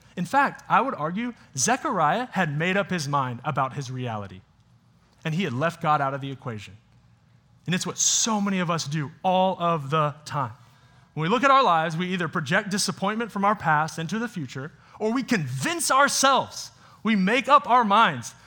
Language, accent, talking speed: English, American, 195 wpm